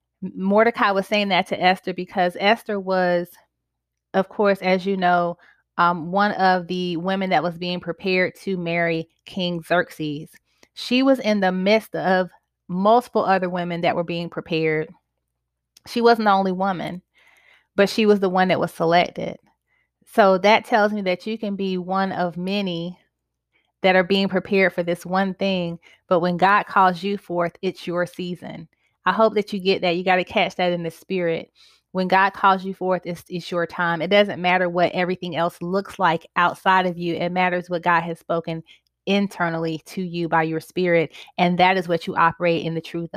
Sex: female